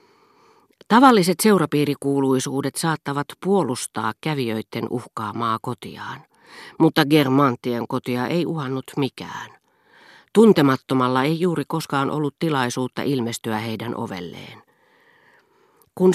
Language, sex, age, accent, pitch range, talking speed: Finnish, female, 40-59, native, 120-160 Hz, 85 wpm